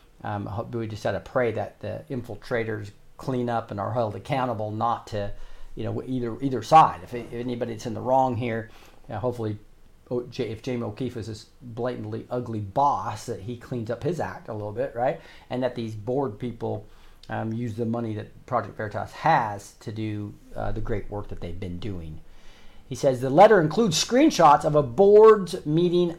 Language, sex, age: English, male, 40-59